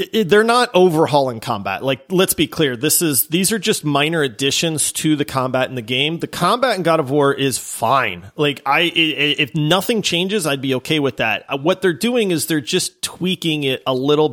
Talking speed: 205 wpm